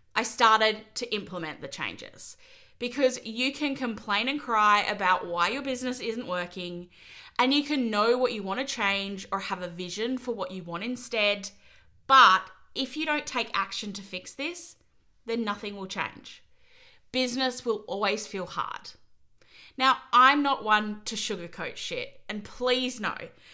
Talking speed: 165 wpm